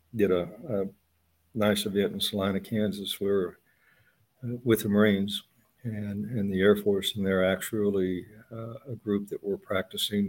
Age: 60-79